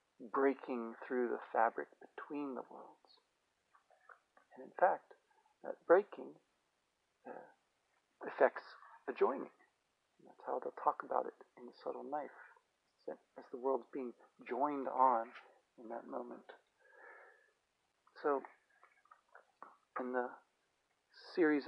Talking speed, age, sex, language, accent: 110 wpm, 40-59, male, English, American